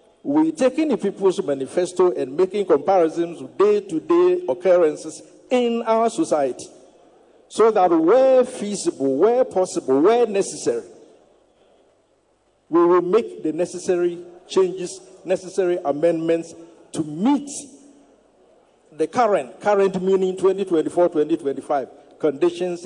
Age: 50-69